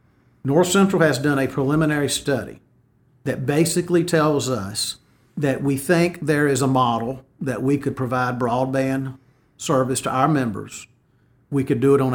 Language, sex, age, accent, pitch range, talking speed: English, male, 50-69, American, 120-140 Hz, 160 wpm